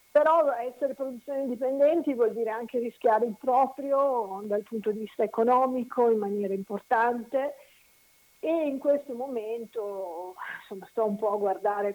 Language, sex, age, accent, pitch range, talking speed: Italian, female, 50-69, native, 200-260 Hz, 140 wpm